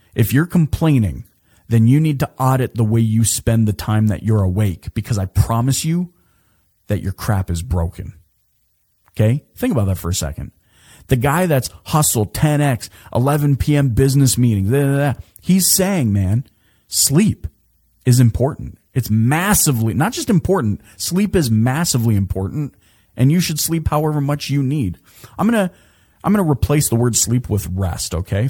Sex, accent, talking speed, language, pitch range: male, American, 170 wpm, English, 105-140 Hz